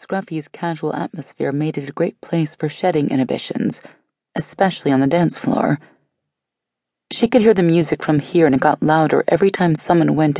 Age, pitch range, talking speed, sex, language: 30-49, 140-190 Hz, 180 wpm, female, English